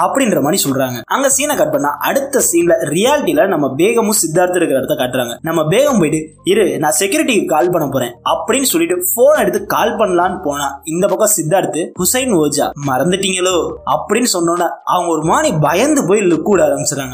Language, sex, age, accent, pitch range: Tamil, male, 20-39, native, 160-260 Hz